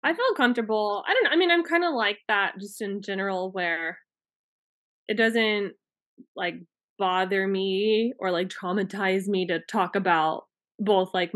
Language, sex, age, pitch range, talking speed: English, female, 20-39, 185-235 Hz, 165 wpm